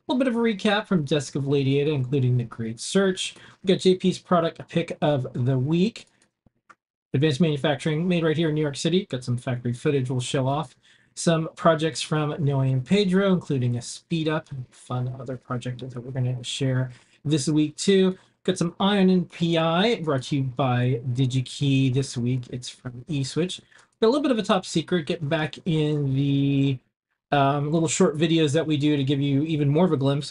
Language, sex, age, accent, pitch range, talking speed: English, male, 40-59, American, 130-175 Hz, 200 wpm